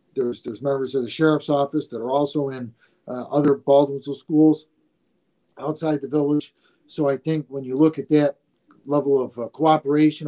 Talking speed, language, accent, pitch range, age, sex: 175 wpm, English, American, 135-155 Hz, 50-69, male